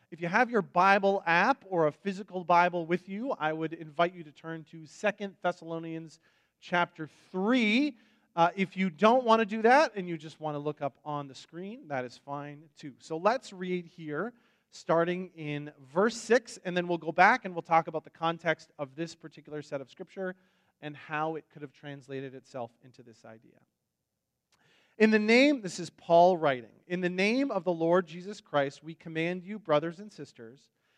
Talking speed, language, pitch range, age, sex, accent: 195 wpm, English, 150-190 Hz, 40-59, male, American